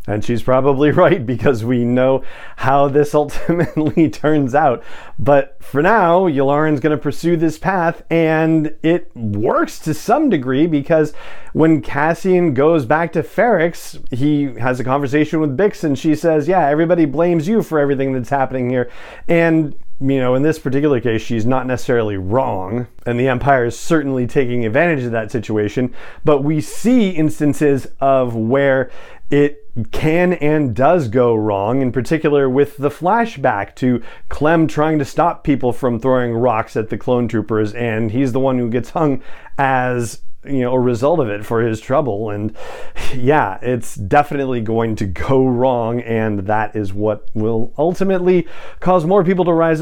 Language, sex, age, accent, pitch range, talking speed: English, male, 40-59, American, 120-155 Hz, 165 wpm